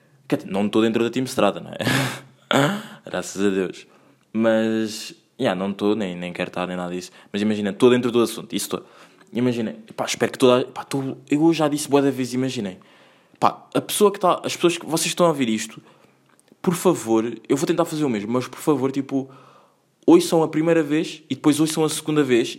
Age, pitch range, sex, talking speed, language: 20-39, 110-150 Hz, male, 205 wpm, Portuguese